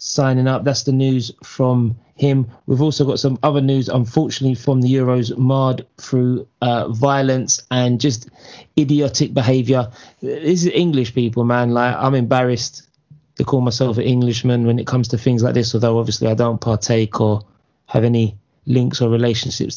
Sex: male